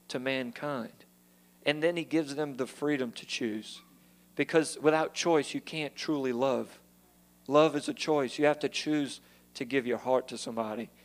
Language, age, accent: English, 40-59, American